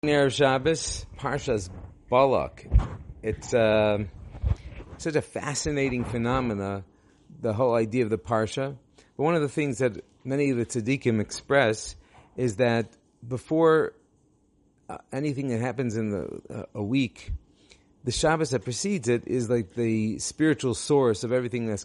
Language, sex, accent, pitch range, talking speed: English, male, American, 105-135 Hz, 150 wpm